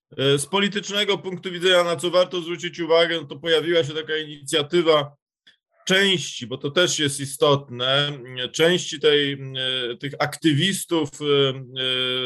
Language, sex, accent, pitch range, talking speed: Polish, male, native, 135-160 Hz, 120 wpm